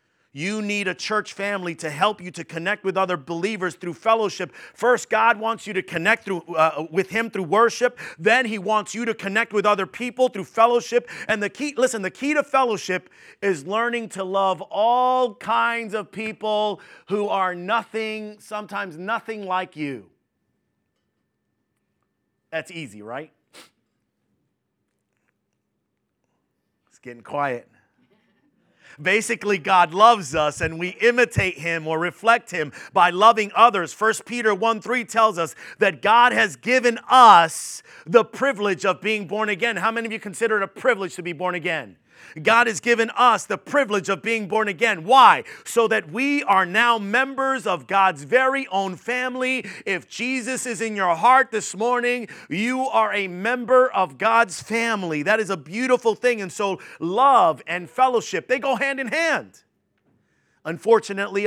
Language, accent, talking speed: English, American, 160 wpm